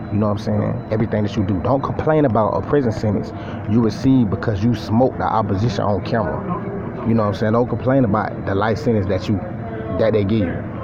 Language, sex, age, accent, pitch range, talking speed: English, male, 30-49, American, 105-120 Hz, 225 wpm